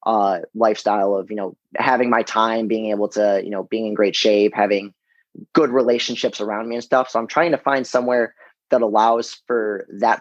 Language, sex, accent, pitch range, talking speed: English, male, American, 105-120 Hz, 200 wpm